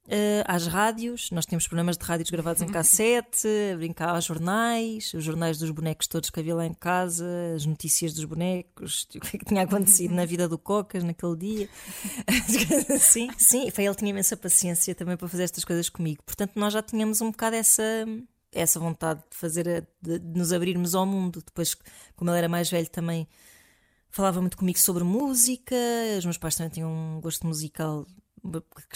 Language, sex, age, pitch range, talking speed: Portuguese, female, 20-39, 165-210 Hz, 175 wpm